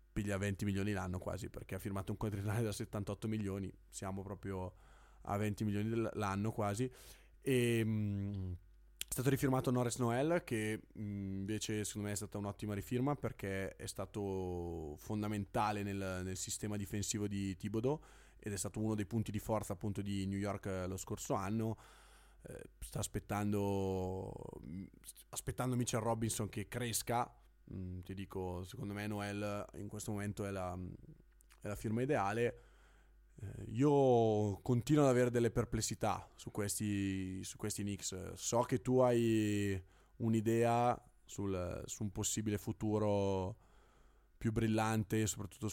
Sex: male